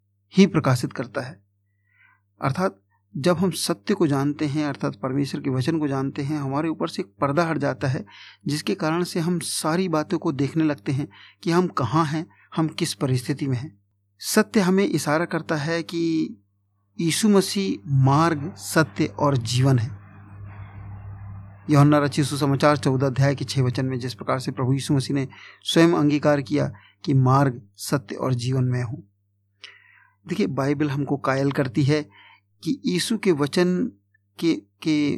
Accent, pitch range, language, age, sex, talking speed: native, 125-160 Hz, Hindi, 50-69, male, 160 wpm